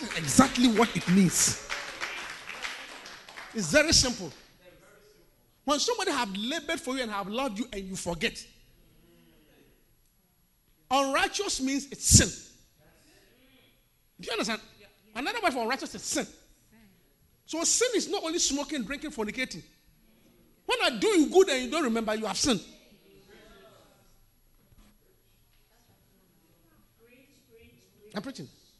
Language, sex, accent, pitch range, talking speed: English, male, Nigerian, 210-330 Hz, 115 wpm